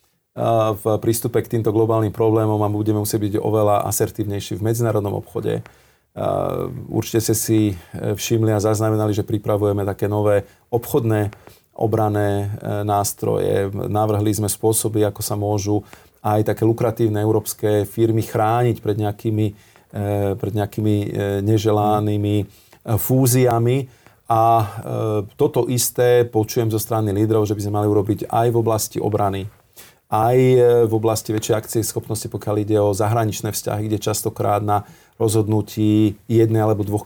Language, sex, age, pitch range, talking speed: Slovak, male, 40-59, 105-115 Hz, 130 wpm